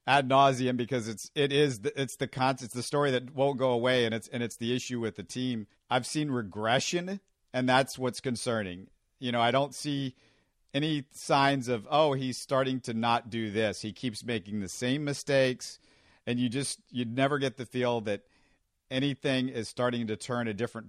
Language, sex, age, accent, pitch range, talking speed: English, male, 50-69, American, 115-140 Hz, 200 wpm